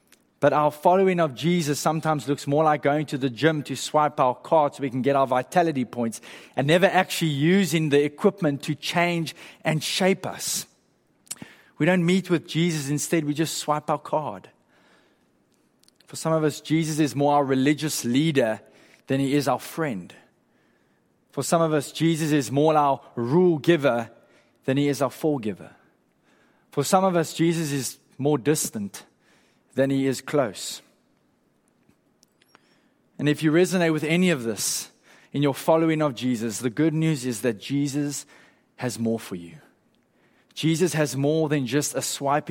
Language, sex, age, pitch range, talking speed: English, male, 20-39, 135-160 Hz, 165 wpm